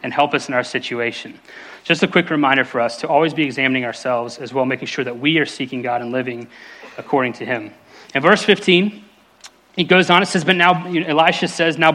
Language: English